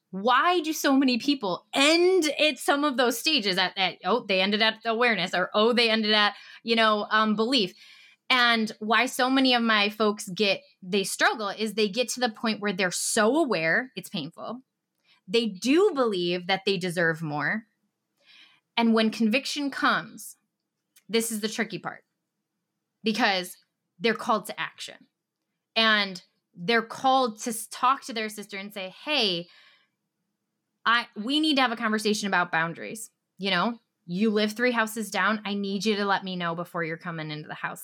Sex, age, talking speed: female, 20-39, 175 wpm